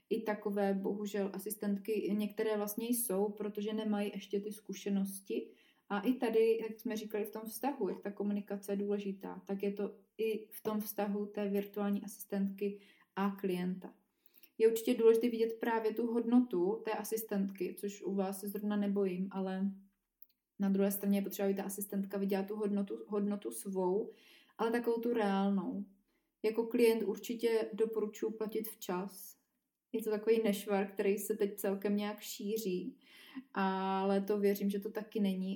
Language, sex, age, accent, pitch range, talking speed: Czech, female, 20-39, native, 200-225 Hz, 160 wpm